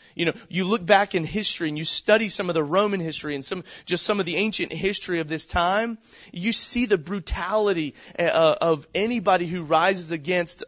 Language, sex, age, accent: English, male, 30-49, American